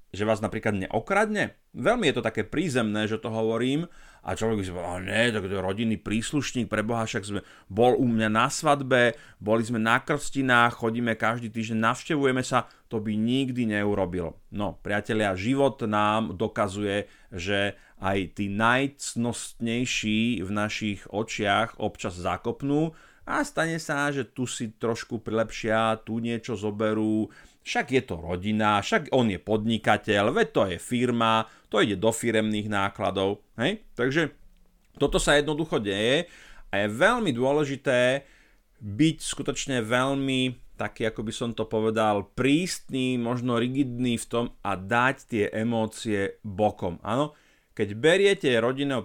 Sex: male